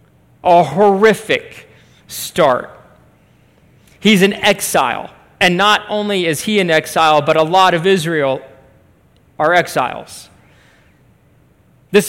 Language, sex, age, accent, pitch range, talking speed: English, male, 40-59, American, 155-210 Hz, 105 wpm